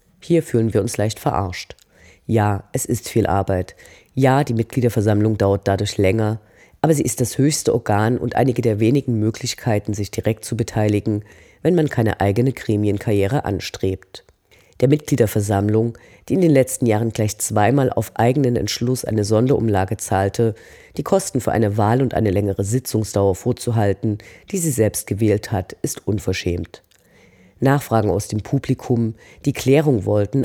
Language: German